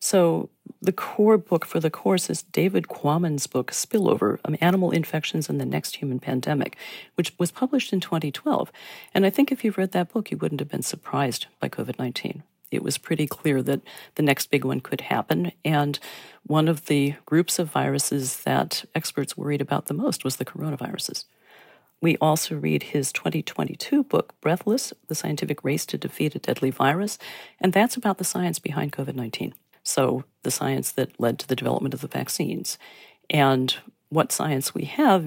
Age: 40-59